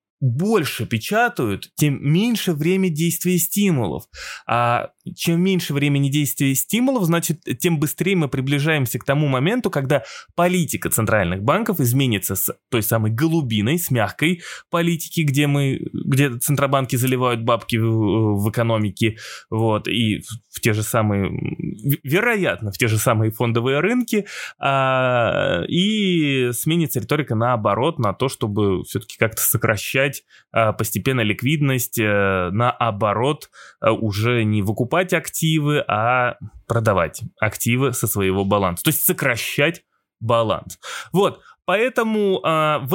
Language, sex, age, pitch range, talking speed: Russian, male, 20-39, 115-165 Hz, 120 wpm